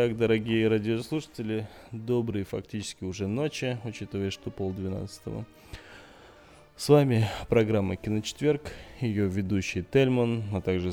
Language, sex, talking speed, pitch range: Russian, male, 105 wpm, 90-115 Hz